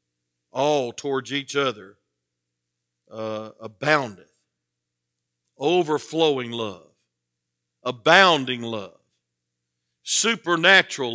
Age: 50-69